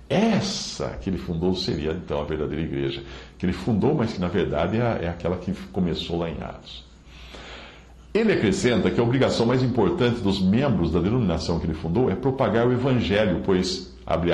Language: Portuguese